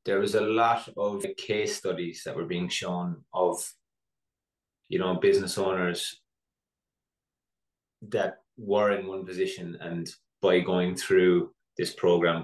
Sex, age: male, 20-39